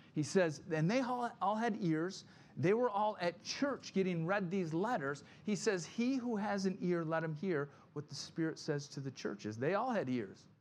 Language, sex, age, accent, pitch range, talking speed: English, male, 40-59, American, 135-185 Hz, 210 wpm